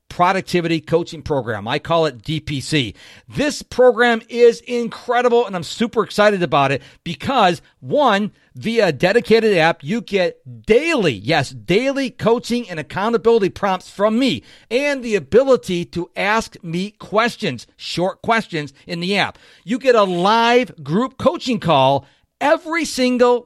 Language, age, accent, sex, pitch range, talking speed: English, 50-69, American, male, 165-245 Hz, 140 wpm